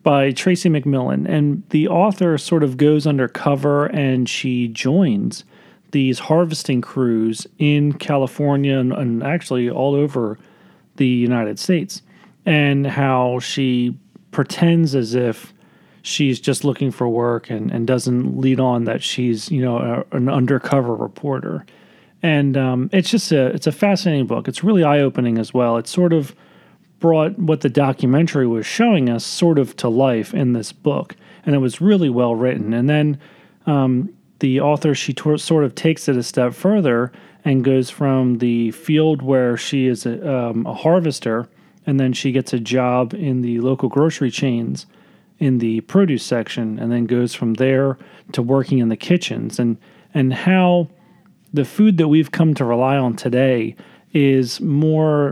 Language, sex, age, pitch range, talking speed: English, male, 40-59, 125-155 Hz, 165 wpm